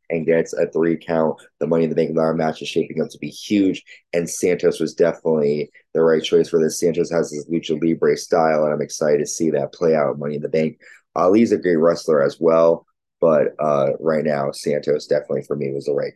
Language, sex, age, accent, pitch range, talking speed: English, male, 20-39, American, 80-95 Hz, 235 wpm